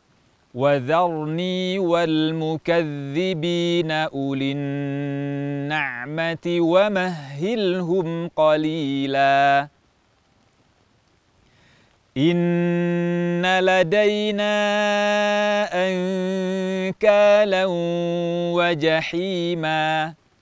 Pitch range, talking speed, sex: 155-185 Hz, 30 wpm, male